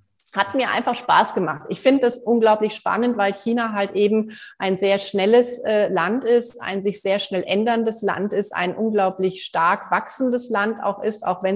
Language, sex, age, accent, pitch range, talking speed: German, female, 30-49, German, 195-235 Hz, 185 wpm